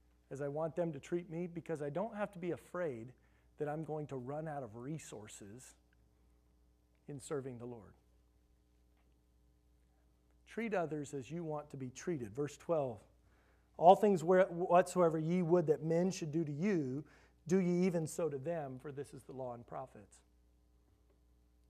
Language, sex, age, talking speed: English, male, 40-59, 165 wpm